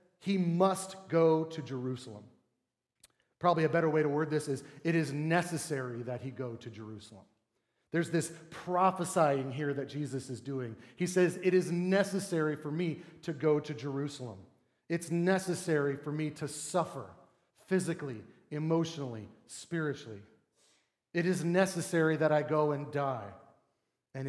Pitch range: 135-170 Hz